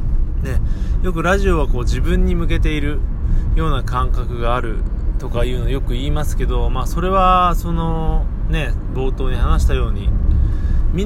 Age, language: 20-39, Japanese